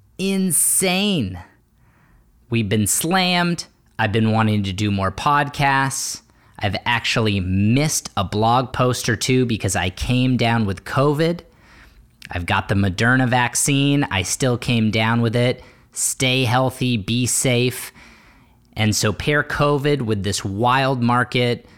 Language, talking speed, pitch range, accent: English, 130 wpm, 100-130 Hz, American